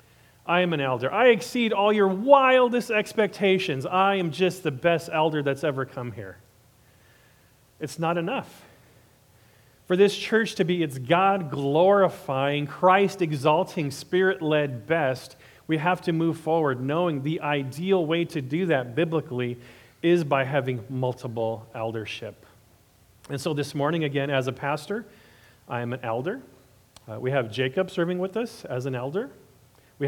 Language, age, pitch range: English, 40-59, 130-180 Hz